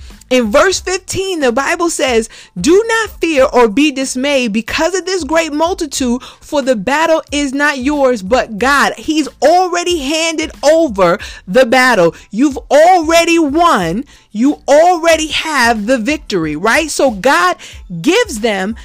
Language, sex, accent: English, female, American